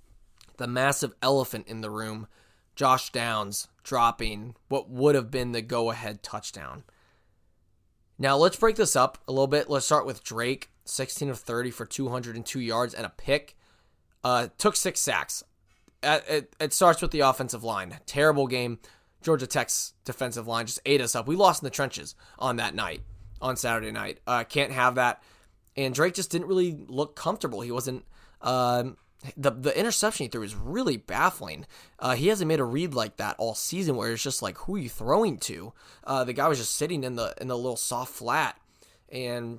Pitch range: 115-140 Hz